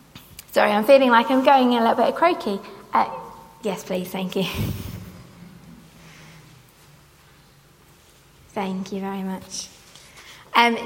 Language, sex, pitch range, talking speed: English, female, 210-260 Hz, 115 wpm